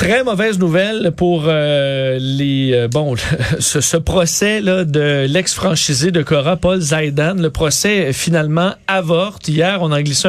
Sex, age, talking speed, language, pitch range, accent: male, 40-59, 155 wpm, French, 145-180 Hz, Canadian